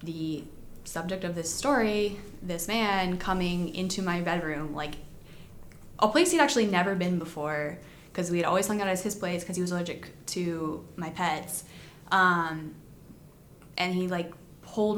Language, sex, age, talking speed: English, female, 20-39, 160 wpm